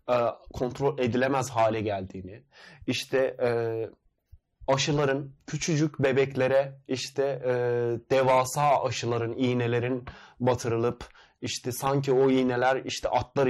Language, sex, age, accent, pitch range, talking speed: Turkish, male, 30-49, native, 120-135 Hz, 85 wpm